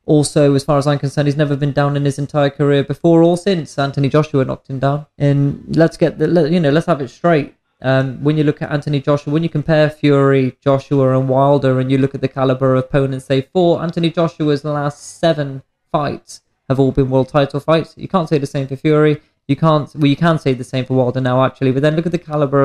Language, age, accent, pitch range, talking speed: English, 20-39, British, 135-160 Hz, 245 wpm